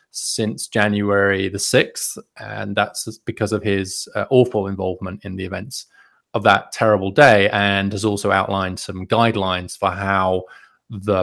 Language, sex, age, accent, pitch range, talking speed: English, male, 20-39, British, 95-110 Hz, 150 wpm